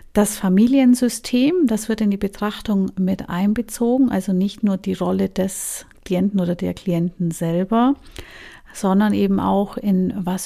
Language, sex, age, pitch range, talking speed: German, female, 50-69, 180-210 Hz, 145 wpm